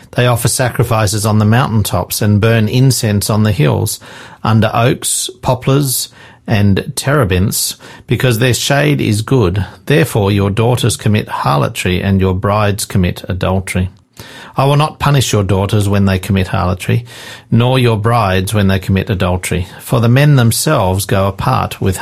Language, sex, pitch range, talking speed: English, male, 95-125 Hz, 155 wpm